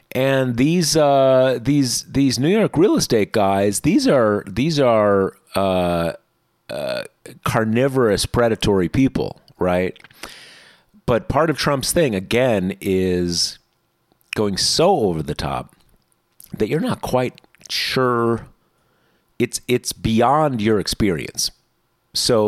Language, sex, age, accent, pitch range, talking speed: English, male, 40-59, American, 95-120 Hz, 115 wpm